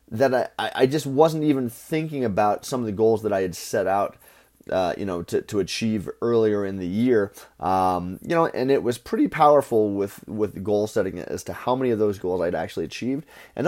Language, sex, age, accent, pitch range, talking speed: English, male, 30-49, American, 100-130 Hz, 220 wpm